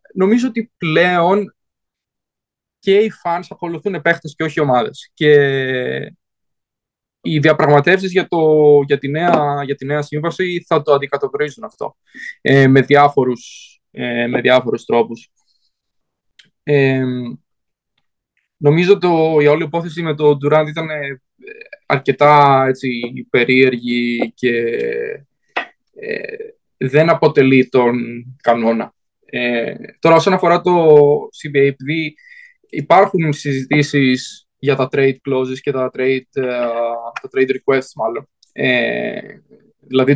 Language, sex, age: Greek, male, 20-39